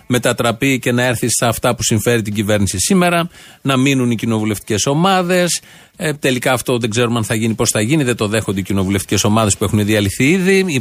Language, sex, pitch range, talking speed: Greek, male, 110-160 Hz, 210 wpm